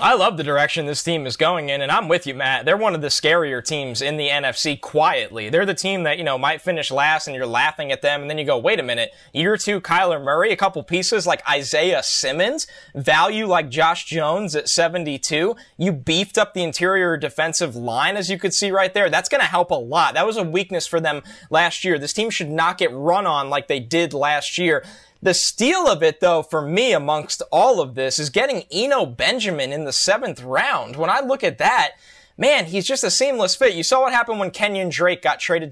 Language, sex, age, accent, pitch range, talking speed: English, male, 20-39, American, 155-200 Hz, 230 wpm